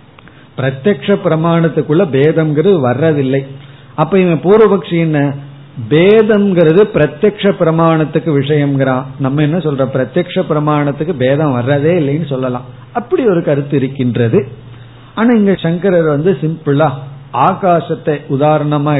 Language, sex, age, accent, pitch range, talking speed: Tamil, male, 50-69, native, 135-185 Hz, 95 wpm